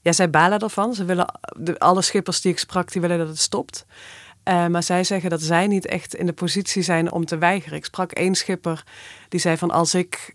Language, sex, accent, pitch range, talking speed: Dutch, female, Dutch, 160-180 Hz, 220 wpm